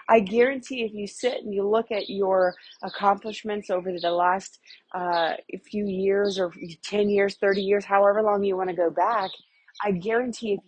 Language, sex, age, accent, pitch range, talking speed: English, female, 30-49, American, 170-205 Hz, 180 wpm